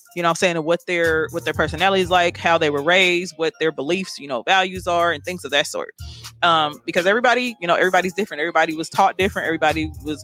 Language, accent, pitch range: English, American, 165-205 Hz